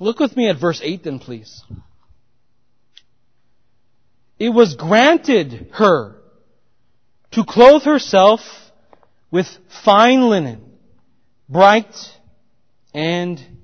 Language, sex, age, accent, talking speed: English, male, 40-59, American, 90 wpm